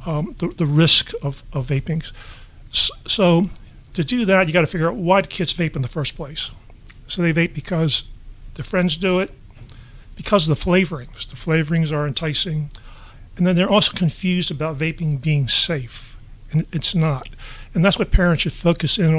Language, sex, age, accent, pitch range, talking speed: English, male, 40-59, American, 140-175 Hz, 180 wpm